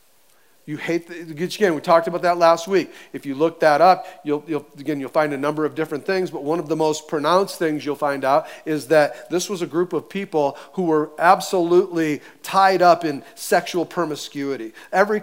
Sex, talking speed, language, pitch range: male, 205 wpm, English, 155-195 Hz